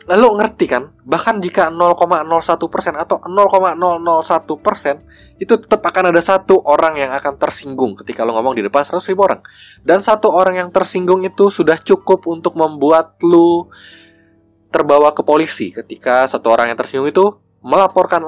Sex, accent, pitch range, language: male, native, 105-165 Hz, Indonesian